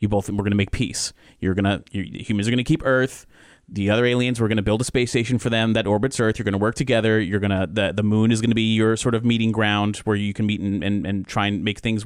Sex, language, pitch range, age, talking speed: male, English, 100-115 Hz, 30-49, 315 wpm